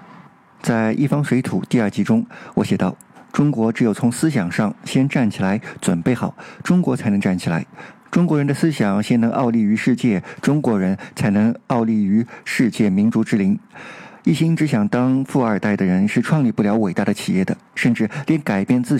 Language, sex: Chinese, male